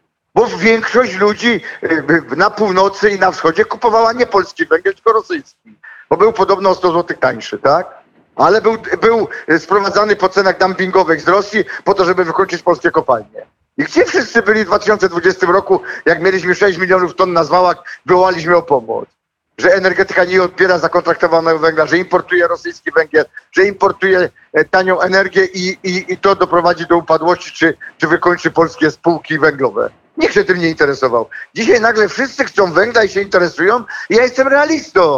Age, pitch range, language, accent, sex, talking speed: 50-69, 175-225 Hz, Polish, native, male, 165 wpm